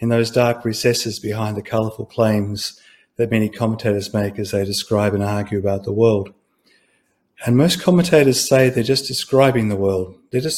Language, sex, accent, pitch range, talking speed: English, male, Australian, 110-130 Hz, 175 wpm